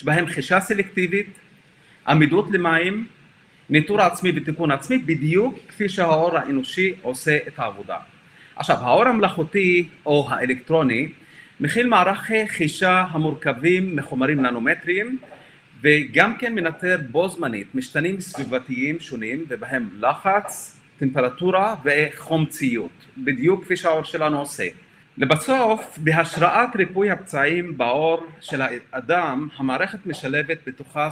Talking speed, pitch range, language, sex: 105 wpm, 150-190 Hz, Hebrew, male